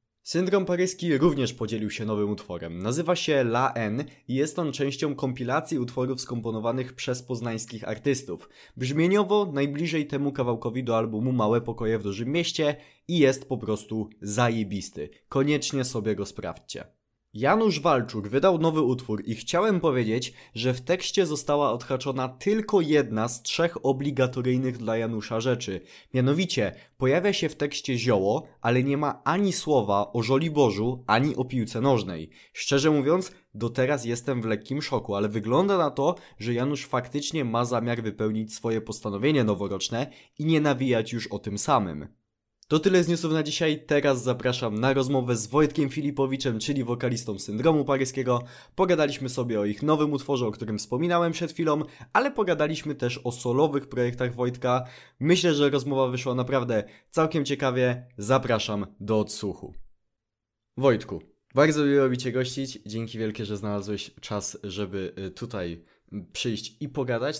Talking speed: 150 wpm